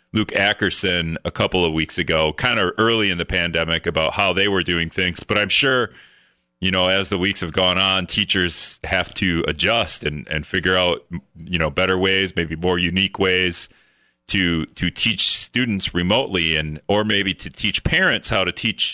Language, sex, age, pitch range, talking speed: English, male, 40-59, 90-115 Hz, 190 wpm